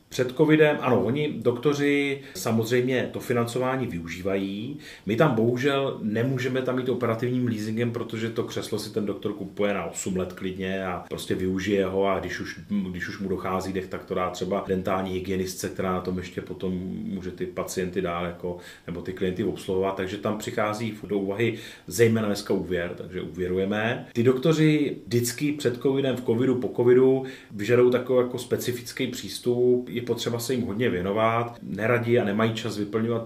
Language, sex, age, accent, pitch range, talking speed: Czech, male, 30-49, native, 95-120 Hz, 170 wpm